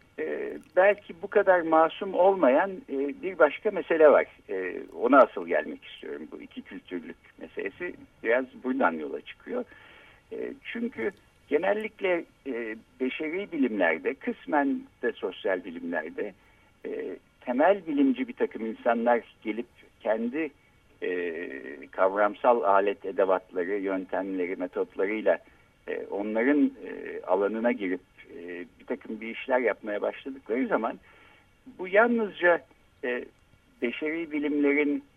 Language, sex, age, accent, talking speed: Turkish, male, 60-79, native, 95 wpm